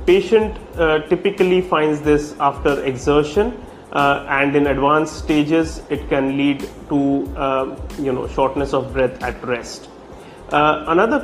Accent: Indian